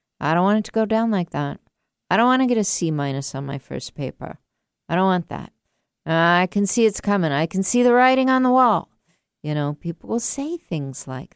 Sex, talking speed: female, 240 wpm